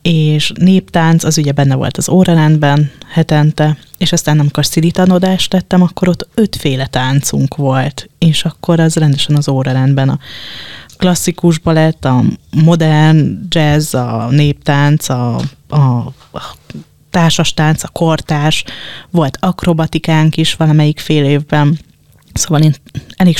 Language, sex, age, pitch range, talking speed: Hungarian, female, 20-39, 145-165 Hz, 125 wpm